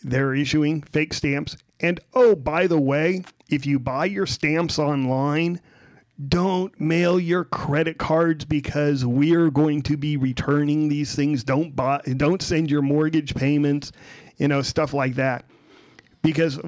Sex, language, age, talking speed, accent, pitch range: male, English, 40-59, 150 wpm, American, 130-150 Hz